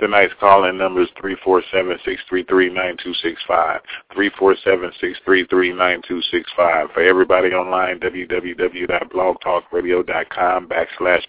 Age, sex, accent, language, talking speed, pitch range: 30-49, male, American, English, 160 wpm, 90-95 Hz